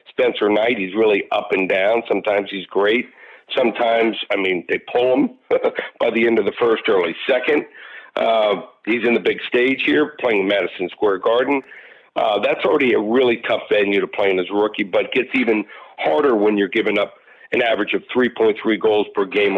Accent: American